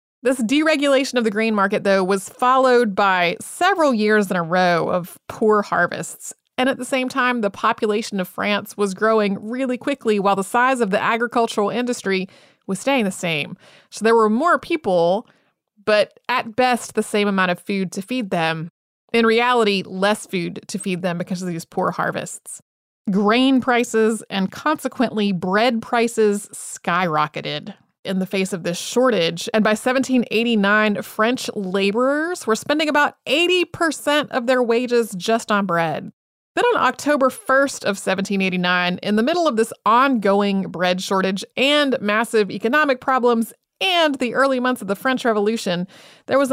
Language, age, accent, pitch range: English, 30-49, American, 195-255 Hz